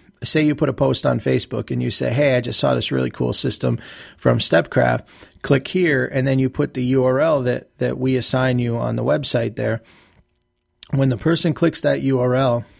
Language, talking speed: English, 200 wpm